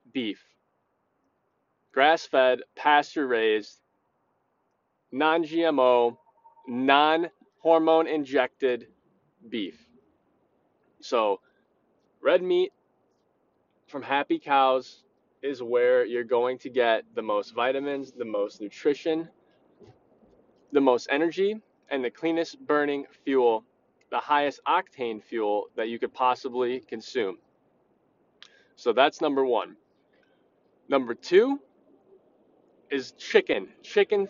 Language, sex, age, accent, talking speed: English, male, 20-39, American, 85 wpm